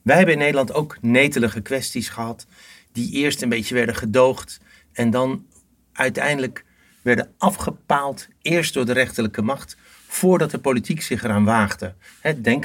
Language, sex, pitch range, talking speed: Dutch, male, 110-135 Hz, 145 wpm